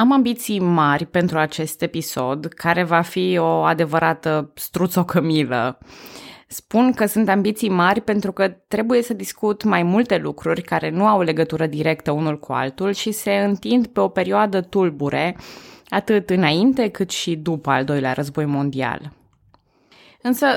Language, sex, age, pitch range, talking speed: Romanian, female, 20-39, 155-200 Hz, 150 wpm